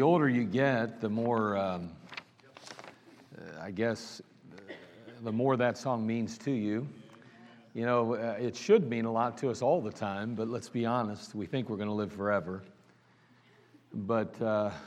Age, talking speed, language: 50-69, 175 wpm, English